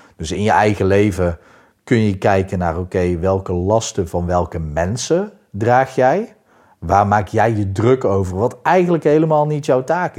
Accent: Dutch